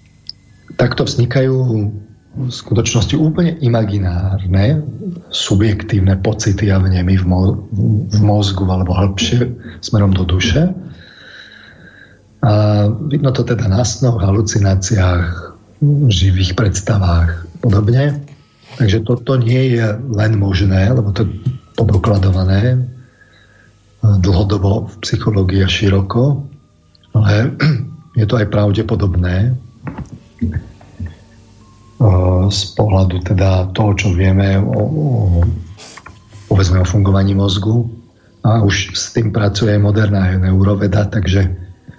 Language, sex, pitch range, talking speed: Slovak, male, 95-120 Hz, 95 wpm